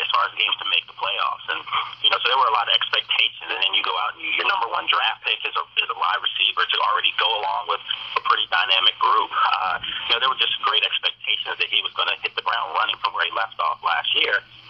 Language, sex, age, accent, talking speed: English, male, 30-49, American, 275 wpm